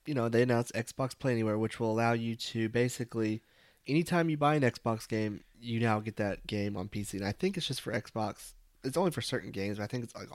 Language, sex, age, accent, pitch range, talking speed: English, male, 20-39, American, 105-125 Hz, 250 wpm